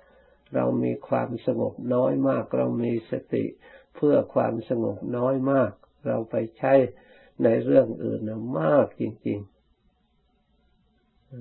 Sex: male